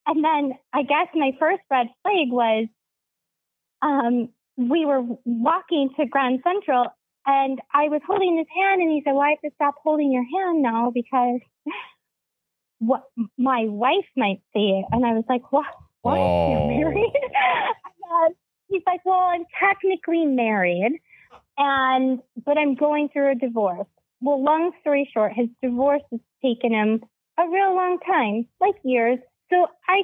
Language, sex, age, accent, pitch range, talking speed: English, female, 30-49, American, 245-330 Hz, 160 wpm